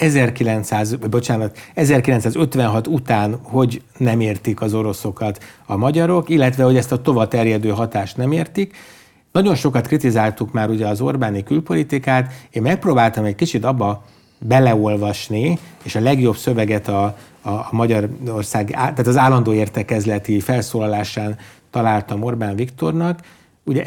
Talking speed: 130 wpm